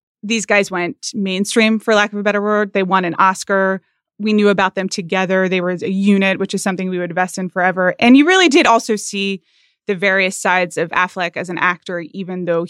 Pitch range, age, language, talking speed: 185-225 Hz, 20-39, English, 220 wpm